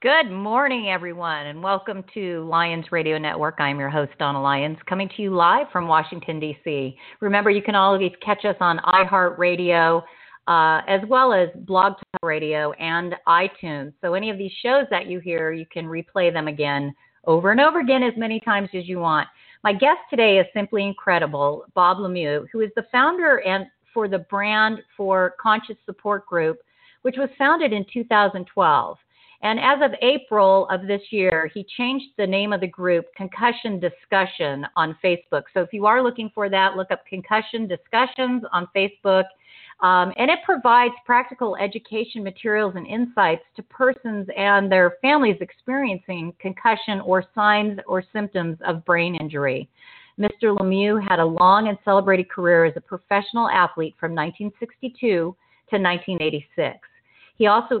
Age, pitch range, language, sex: 40-59, 175-220 Hz, English, female